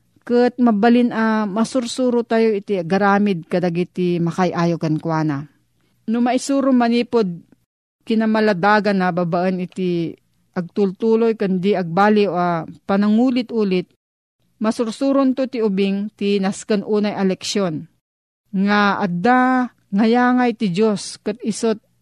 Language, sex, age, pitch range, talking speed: Filipino, female, 40-59, 180-225 Hz, 105 wpm